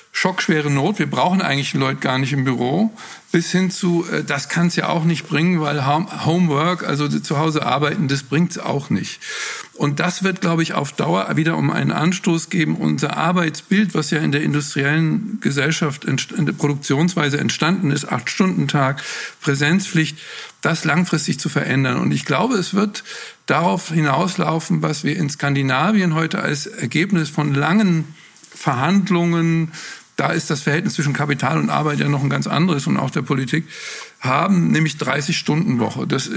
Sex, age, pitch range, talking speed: male, 50-69, 145-180 Hz, 160 wpm